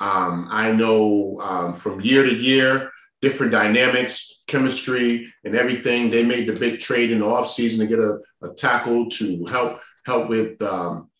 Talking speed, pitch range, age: 165 wpm, 100-115 Hz, 30-49